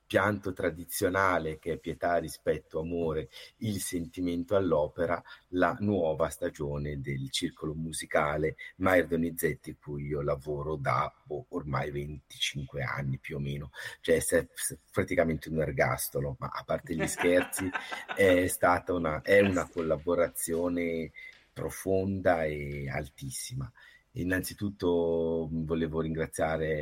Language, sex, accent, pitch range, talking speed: Italian, male, native, 70-85 Hz, 115 wpm